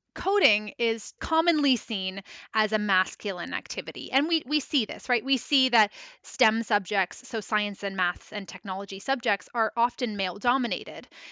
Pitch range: 210-275 Hz